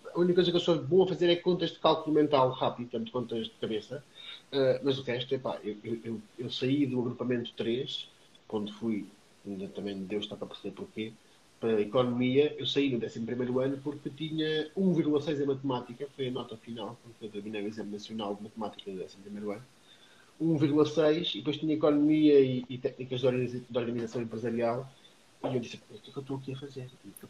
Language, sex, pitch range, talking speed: Portuguese, male, 120-160 Hz, 210 wpm